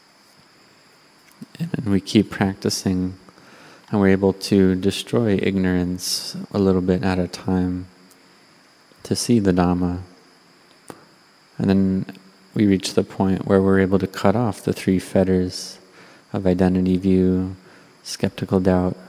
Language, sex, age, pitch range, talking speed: English, male, 30-49, 90-100 Hz, 125 wpm